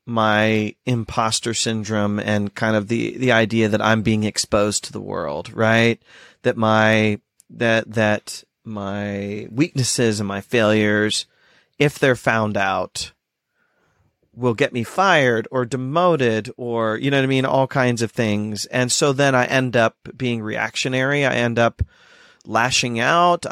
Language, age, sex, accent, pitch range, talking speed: English, 30-49, male, American, 110-135 Hz, 150 wpm